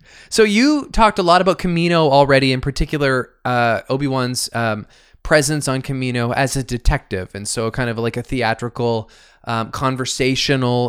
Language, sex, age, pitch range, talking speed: English, male, 20-39, 105-130 Hz, 150 wpm